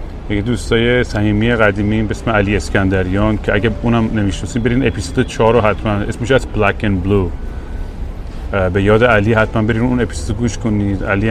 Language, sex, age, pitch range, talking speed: Persian, male, 30-49, 95-110 Hz, 170 wpm